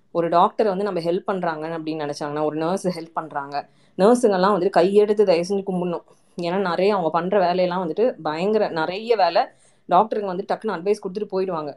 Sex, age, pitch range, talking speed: female, 20-39, 165-200 Hz, 170 wpm